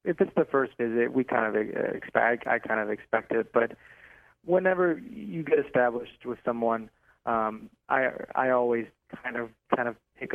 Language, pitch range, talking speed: English, 110-125 Hz, 175 wpm